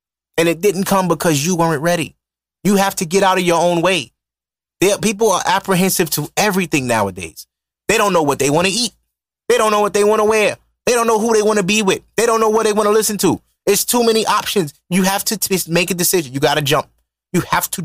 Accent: American